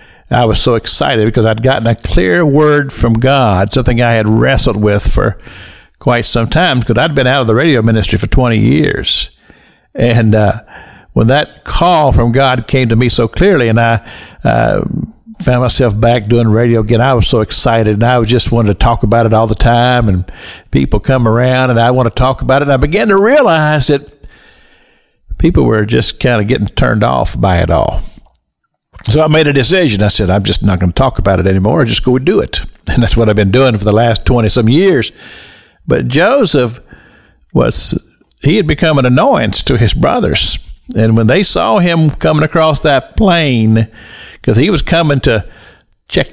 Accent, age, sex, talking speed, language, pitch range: American, 60-79, male, 200 wpm, English, 110-135 Hz